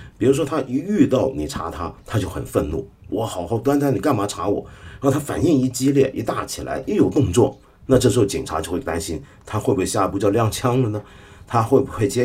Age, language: 50-69, Chinese